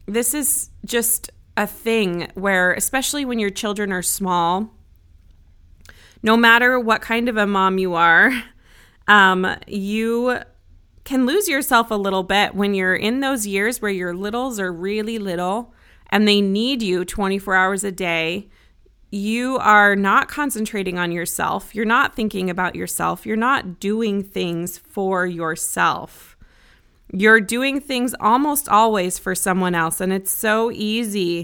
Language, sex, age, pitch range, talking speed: English, female, 20-39, 185-225 Hz, 145 wpm